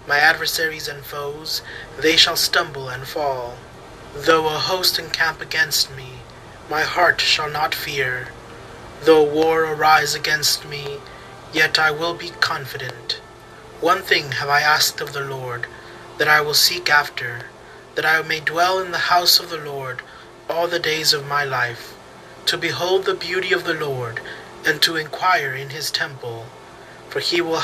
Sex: male